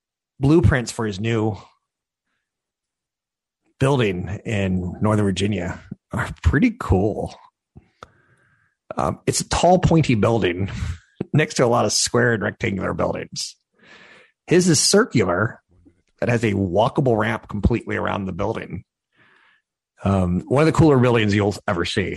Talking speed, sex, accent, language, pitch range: 125 wpm, male, American, English, 95-125 Hz